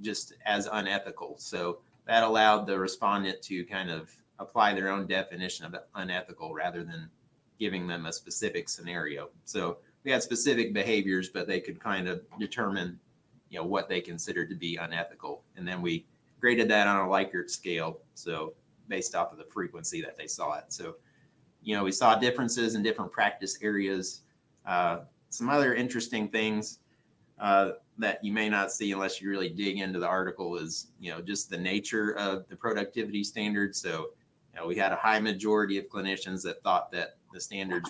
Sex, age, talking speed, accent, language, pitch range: male, 30-49, 180 wpm, American, English, 90-105 Hz